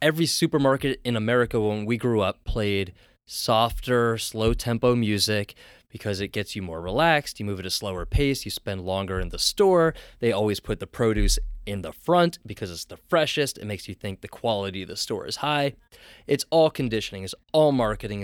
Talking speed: 195 wpm